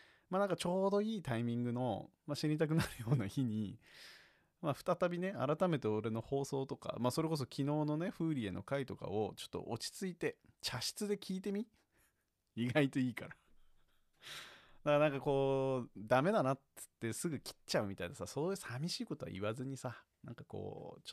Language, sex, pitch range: Japanese, male, 115-155 Hz